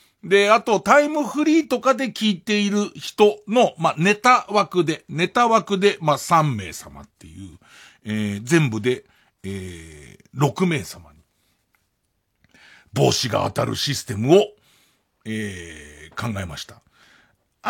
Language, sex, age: Japanese, male, 50-69